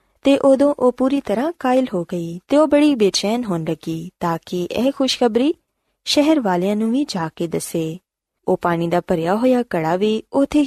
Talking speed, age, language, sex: 185 wpm, 20-39, Punjabi, female